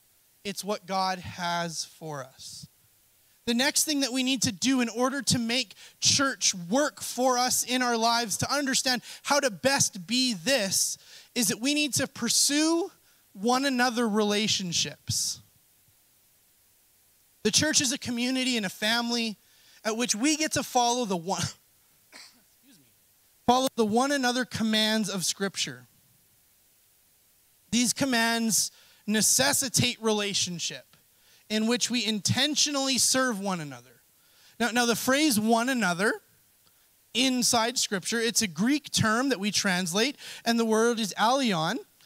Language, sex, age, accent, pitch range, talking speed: English, male, 30-49, American, 200-255 Hz, 135 wpm